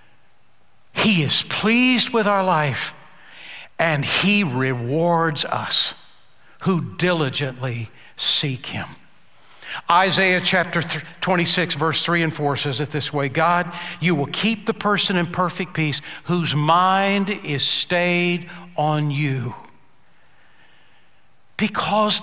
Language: English